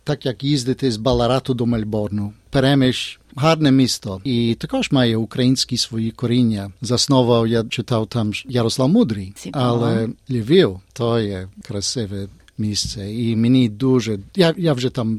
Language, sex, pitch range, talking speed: Ukrainian, male, 115-135 Hz, 140 wpm